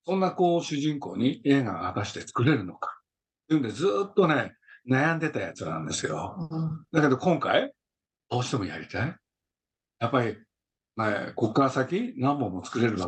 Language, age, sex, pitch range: Japanese, 60-79, male, 115-160 Hz